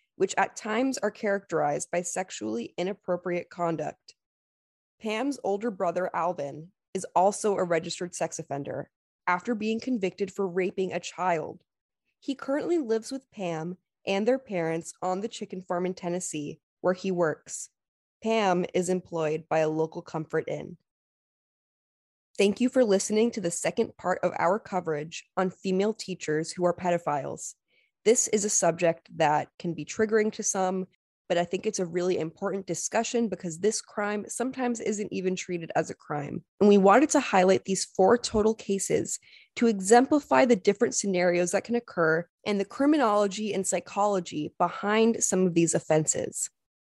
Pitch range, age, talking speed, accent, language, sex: 175-220 Hz, 20-39, 155 wpm, American, English, female